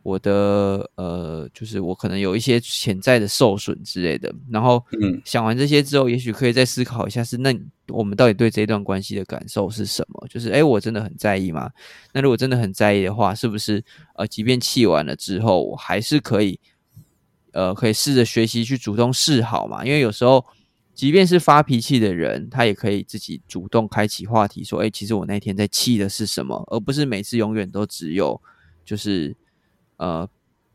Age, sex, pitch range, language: 20-39, male, 100-125 Hz, Chinese